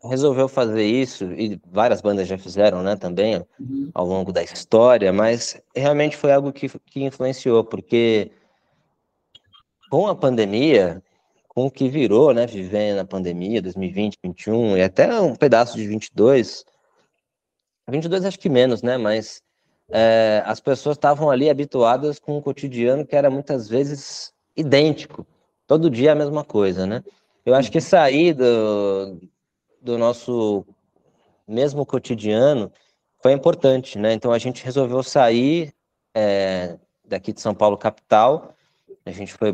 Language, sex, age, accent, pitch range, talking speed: Portuguese, male, 20-39, Brazilian, 105-135 Hz, 145 wpm